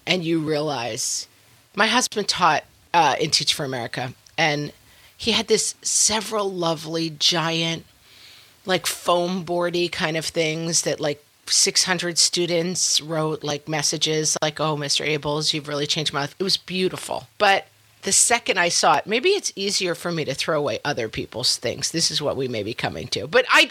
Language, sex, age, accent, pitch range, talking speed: English, female, 40-59, American, 145-195 Hz, 175 wpm